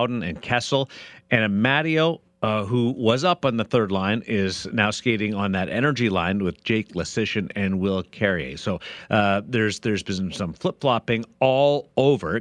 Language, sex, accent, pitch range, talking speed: English, male, American, 105-135 Hz, 165 wpm